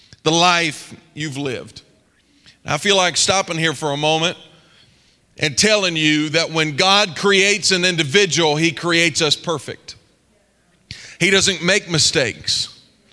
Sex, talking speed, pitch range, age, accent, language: male, 135 wpm, 170-220 Hz, 40-59, American, English